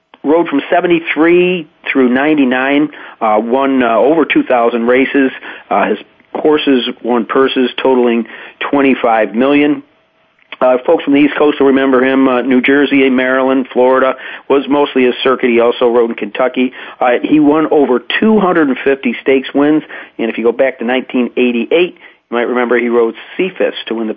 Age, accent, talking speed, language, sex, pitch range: 40-59, American, 160 wpm, English, male, 120-140 Hz